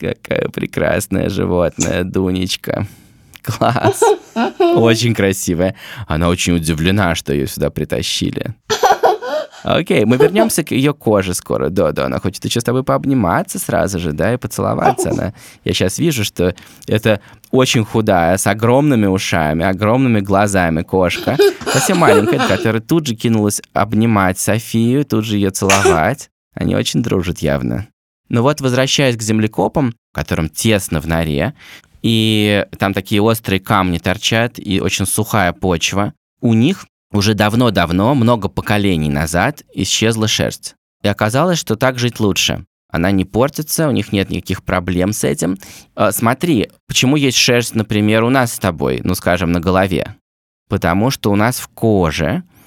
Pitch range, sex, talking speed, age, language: 95-115 Hz, male, 145 wpm, 20-39, Russian